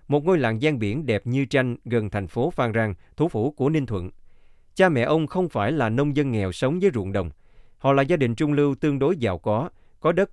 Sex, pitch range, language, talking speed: male, 100-140 Hz, Vietnamese, 250 wpm